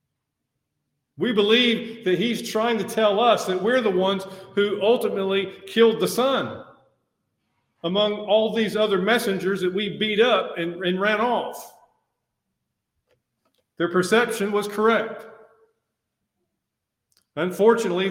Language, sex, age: English, male, 50-69